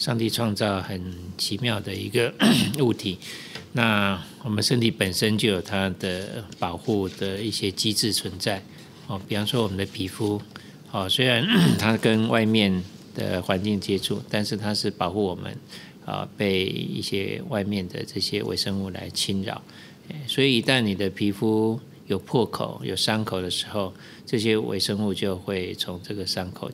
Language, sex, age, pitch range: Chinese, male, 50-69, 95-115 Hz